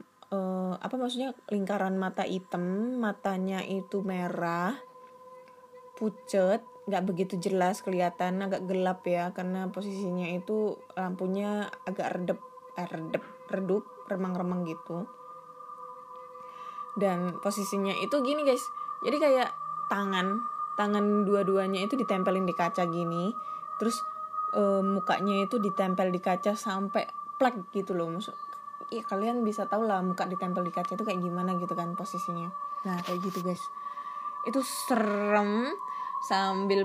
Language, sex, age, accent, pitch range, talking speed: Indonesian, female, 20-39, native, 185-240 Hz, 125 wpm